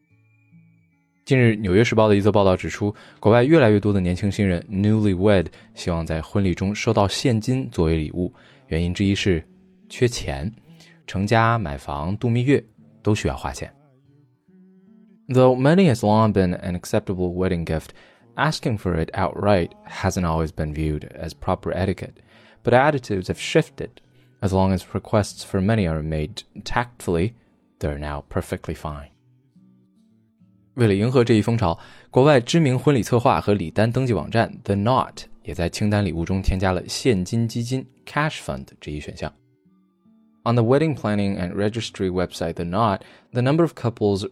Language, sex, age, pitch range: Chinese, male, 20-39, 90-120 Hz